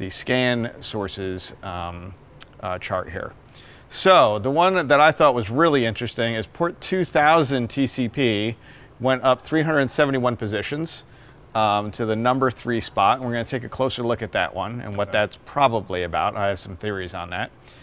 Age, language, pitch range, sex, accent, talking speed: 40-59, English, 110-140 Hz, male, American, 170 wpm